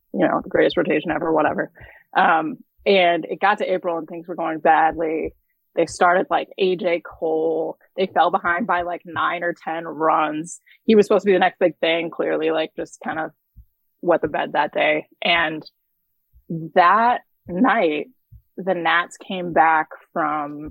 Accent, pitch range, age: American, 165-200 Hz, 20-39